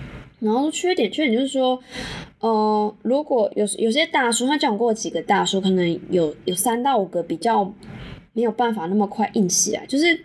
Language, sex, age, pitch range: Chinese, female, 20-39, 185-250 Hz